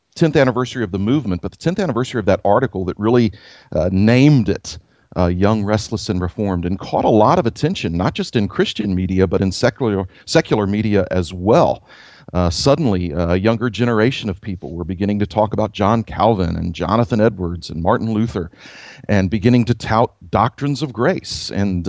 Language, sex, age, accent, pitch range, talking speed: English, male, 40-59, American, 95-120 Hz, 190 wpm